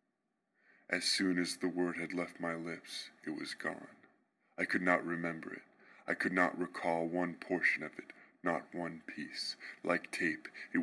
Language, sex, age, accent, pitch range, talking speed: English, female, 20-39, American, 85-95 Hz, 170 wpm